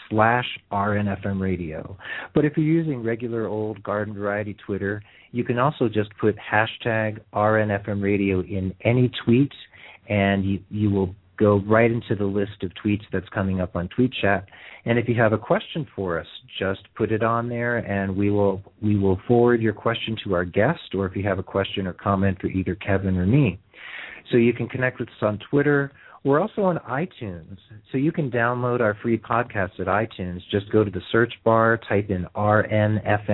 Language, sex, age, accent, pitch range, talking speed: English, male, 40-59, American, 95-115 Hz, 195 wpm